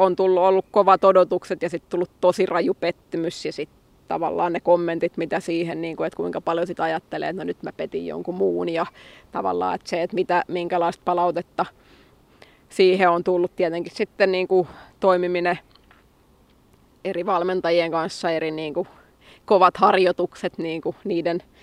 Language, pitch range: Finnish, 170-195 Hz